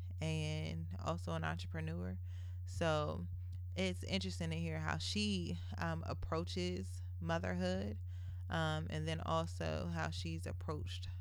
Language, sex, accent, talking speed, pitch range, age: English, female, American, 110 wpm, 85-90 Hz, 20-39